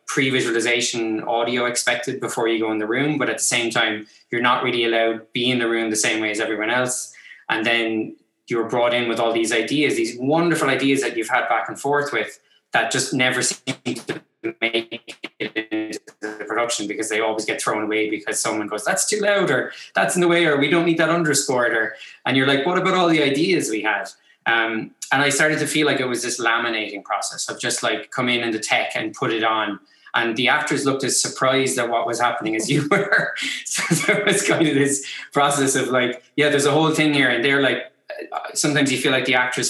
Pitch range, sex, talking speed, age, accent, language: 115-140 Hz, male, 230 wpm, 20-39, Irish, English